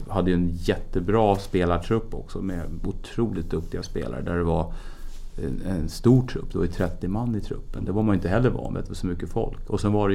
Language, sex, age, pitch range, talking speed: English, male, 30-49, 90-105 Hz, 205 wpm